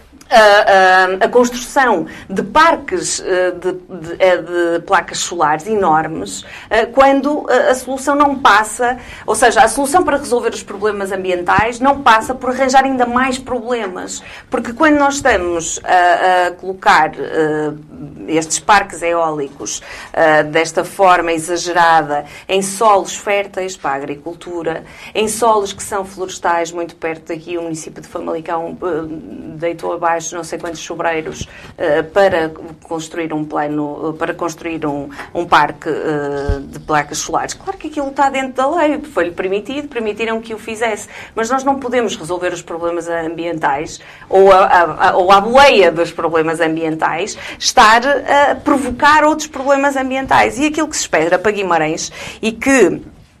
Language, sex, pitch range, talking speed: Portuguese, female, 165-245 Hz, 145 wpm